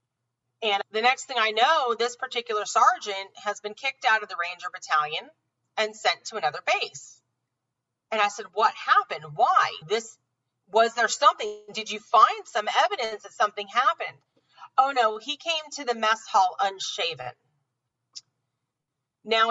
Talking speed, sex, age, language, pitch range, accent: 155 wpm, female, 40-59, English, 160-250 Hz, American